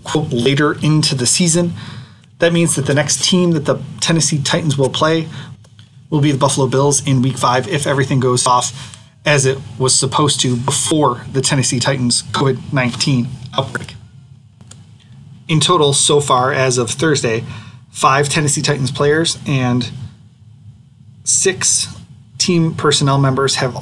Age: 30-49